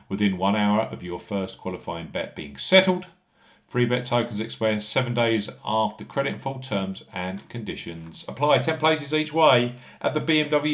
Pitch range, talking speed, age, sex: 105-145 Hz, 175 wpm, 40-59, male